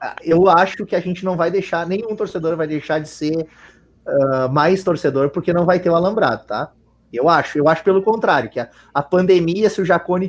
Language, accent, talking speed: Portuguese, Brazilian, 215 wpm